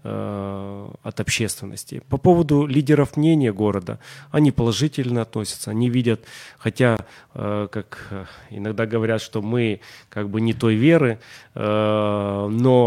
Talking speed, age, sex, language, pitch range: 110 wpm, 30-49, male, Ukrainian, 110-135 Hz